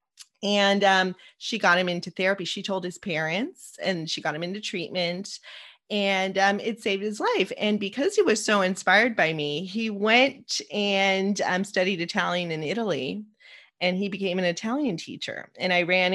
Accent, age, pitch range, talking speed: American, 30-49, 170-210 Hz, 180 wpm